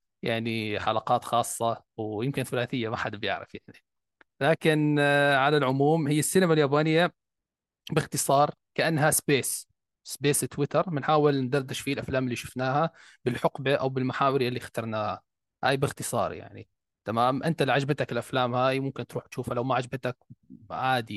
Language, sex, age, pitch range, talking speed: Arabic, male, 20-39, 115-140 Hz, 135 wpm